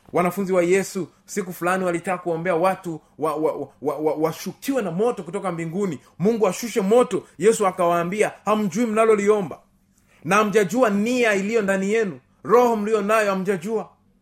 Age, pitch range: 30-49, 175-220 Hz